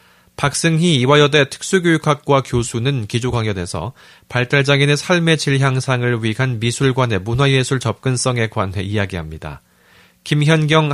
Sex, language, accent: male, Korean, native